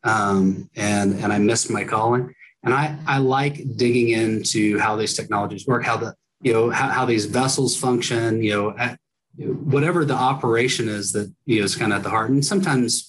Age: 30-49